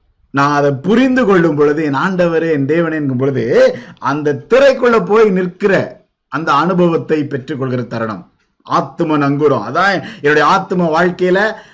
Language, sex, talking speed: Tamil, male, 125 wpm